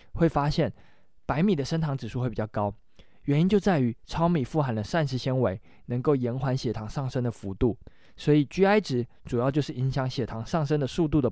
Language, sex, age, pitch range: Chinese, male, 20-39, 115-160 Hz